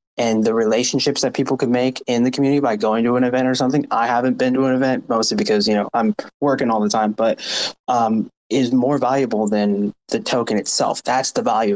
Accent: American